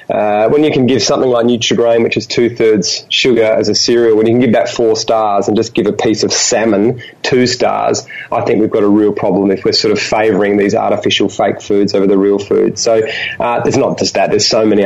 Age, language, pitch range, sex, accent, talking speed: 30-49, English, 105-120 Hz, male, Australian, 240 wpm